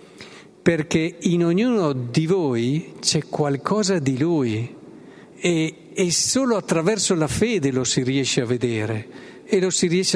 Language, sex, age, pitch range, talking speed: Italian, male, 50-69, 125-185 Hz, 140 wpm